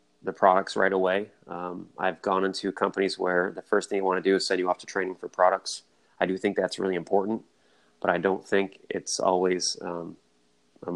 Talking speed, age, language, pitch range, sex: 210 wpm, 30-49, English, 85-100 Hz, male